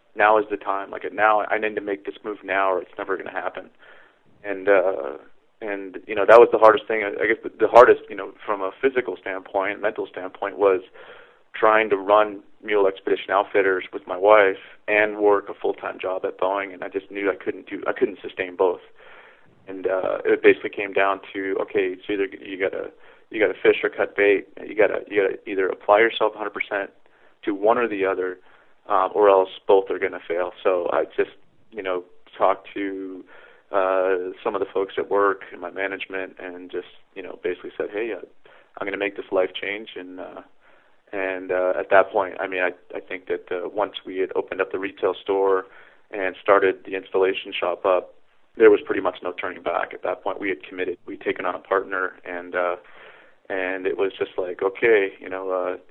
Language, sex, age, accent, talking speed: English, male, 30-49, American, 220 wpm